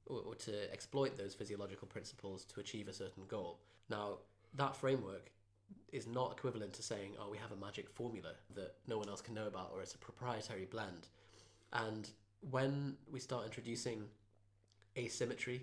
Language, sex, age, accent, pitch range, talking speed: English, male, 20-39, British, 100-130 Hz, 165 wpm